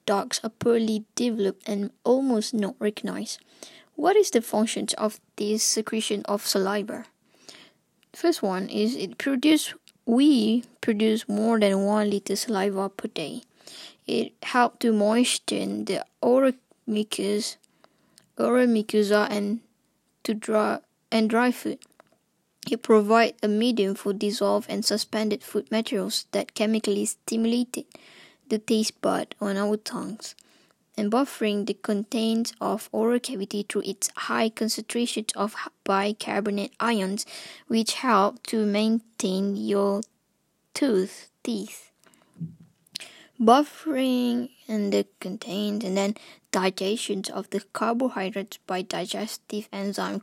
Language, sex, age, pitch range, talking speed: English, female, 10-29, 200-235 Hz, 120 wpm